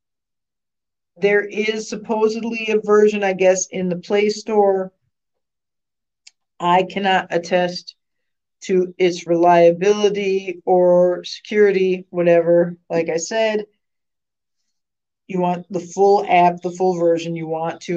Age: 50-69